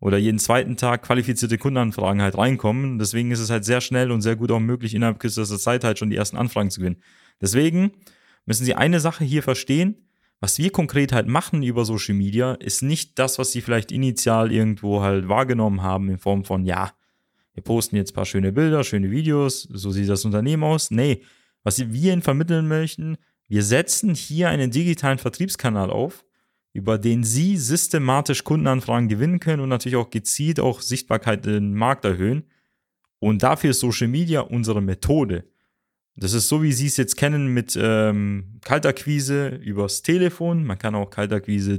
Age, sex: 30-49, male